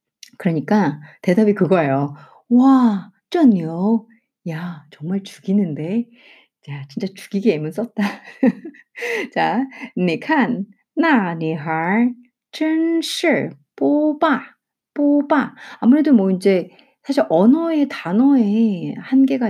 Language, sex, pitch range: Korean, female, 180-250 Hz